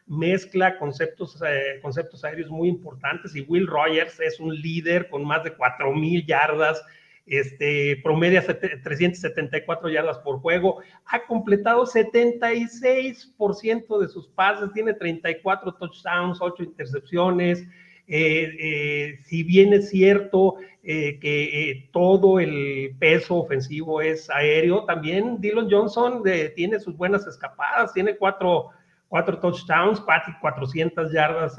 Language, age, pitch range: Spanish, 40-59, 145-185 Hz